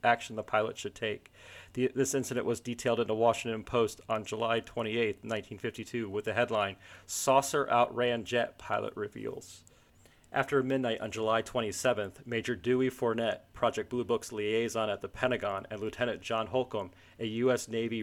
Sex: male